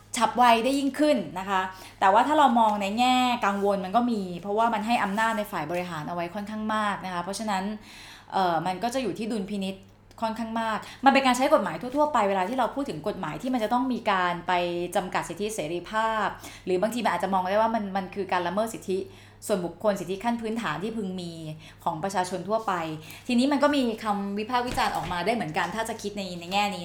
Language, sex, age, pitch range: Thai, female, 20-39, 185-235 Hz